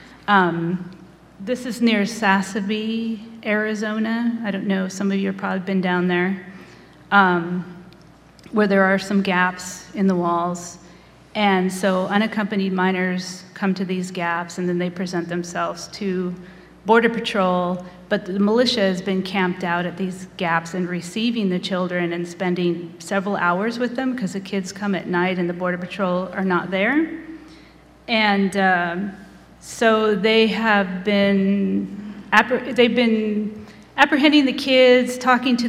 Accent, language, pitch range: American, French, 180-210 Hz